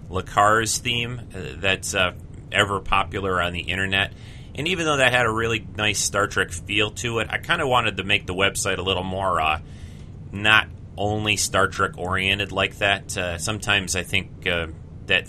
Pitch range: 90-105 Hz